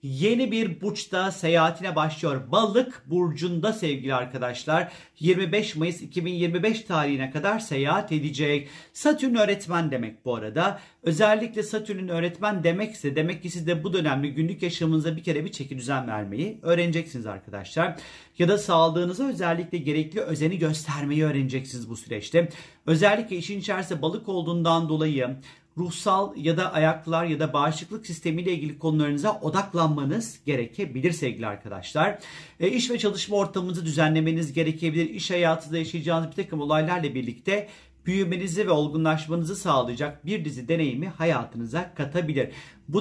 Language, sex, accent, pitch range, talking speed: Turkish, male, native, 145-185 Hz, 130 wpm